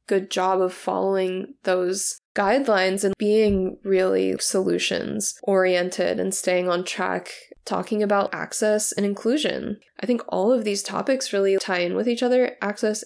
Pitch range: 195-220 Hz